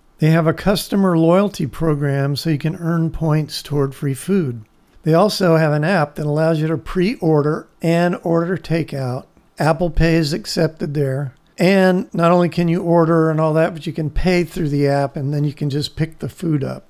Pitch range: 150-170 Hz